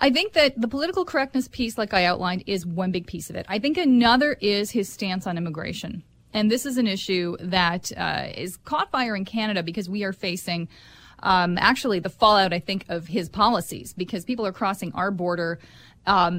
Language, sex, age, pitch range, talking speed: English, female, 30-49, 185-230 Hz, 205 wpm